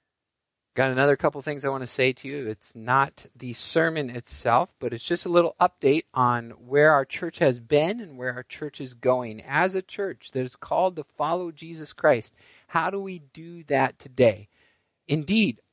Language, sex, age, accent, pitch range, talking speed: English, male, 50-69, American, 120-165 Hz, 195 wpm